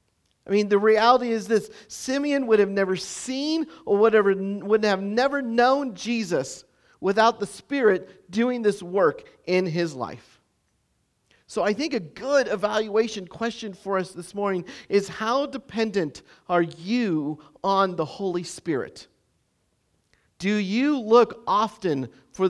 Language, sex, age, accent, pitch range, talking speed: English, male, 50-69, American, 170-225 Hz, 135 wpm